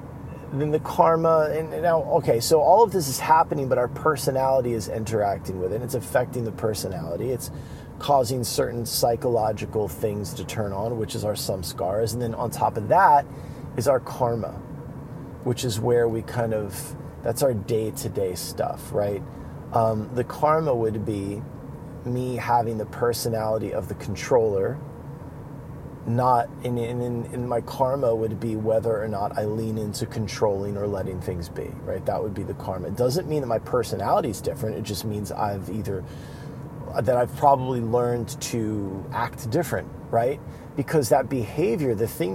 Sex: male